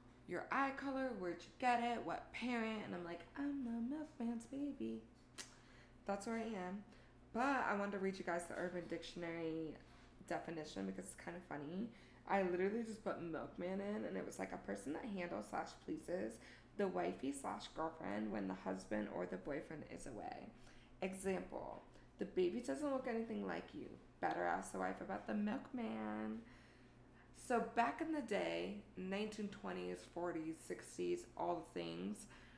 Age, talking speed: 20-39, 165 wpm